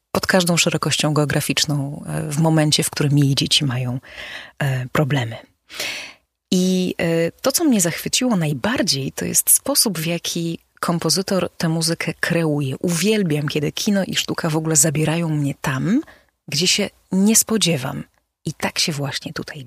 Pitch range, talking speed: 150-180 Hz, 140 wpm